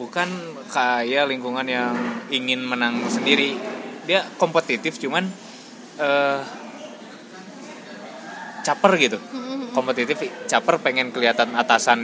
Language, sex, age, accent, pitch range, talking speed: Indonesian, male, 20-39, native, 110-140 Hz, 90 wpm